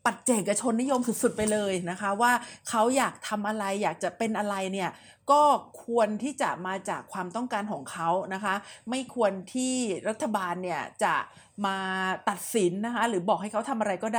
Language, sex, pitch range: Thai, female, 195-245 Hz